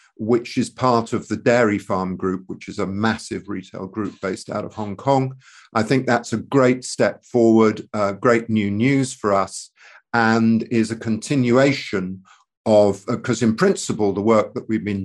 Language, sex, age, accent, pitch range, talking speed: English, male, 50-69, British, 100-120 Hz, 185 wpm